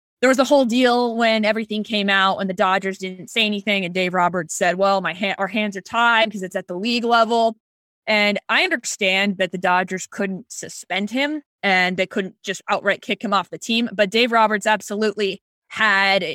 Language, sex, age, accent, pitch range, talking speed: English, female, 20-39, American, 195-235 Hz, 205 wpm